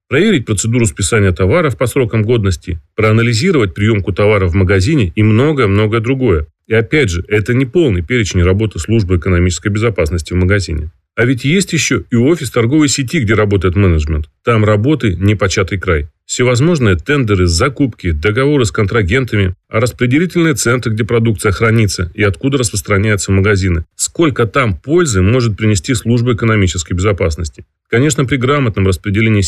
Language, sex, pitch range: Russian, male, 95-125 Hz